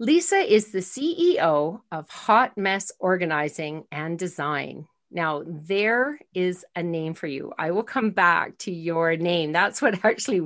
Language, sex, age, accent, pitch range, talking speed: English, female, 40-59, American, 165-225 Hz, 155 wpm